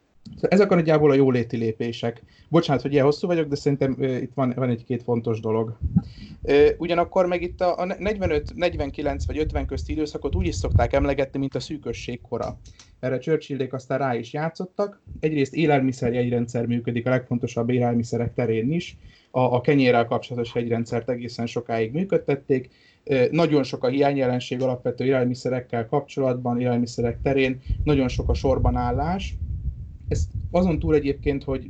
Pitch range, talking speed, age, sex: 115-140 Hz, 150 wpm, 30-49, male